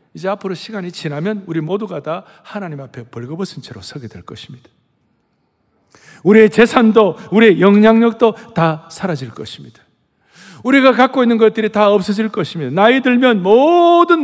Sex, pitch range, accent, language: male, 170-260 Hz, native, Korean